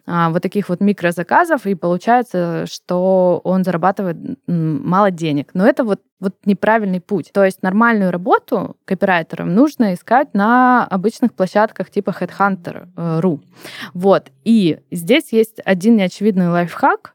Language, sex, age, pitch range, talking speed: Russian, female, 20-39, 180-215 Hz, 125 wpm